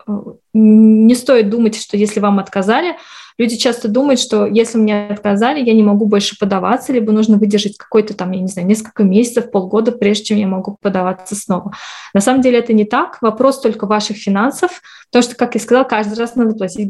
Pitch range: 200-235 Hz